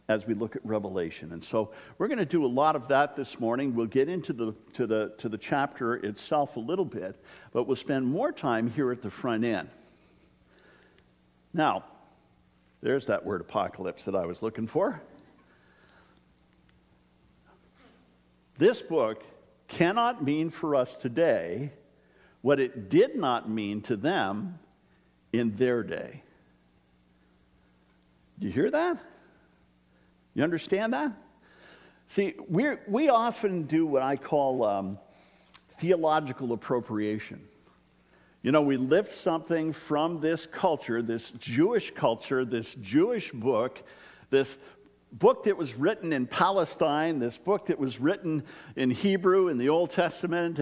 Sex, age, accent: male, 60-79, American